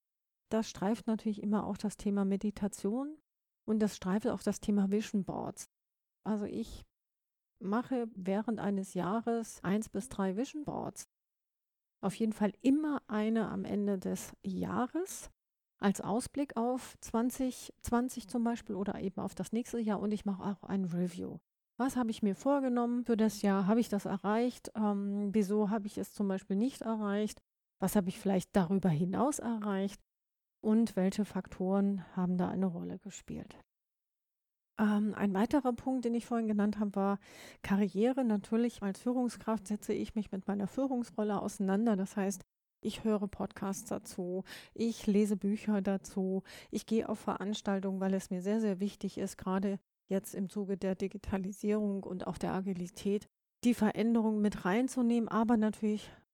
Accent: German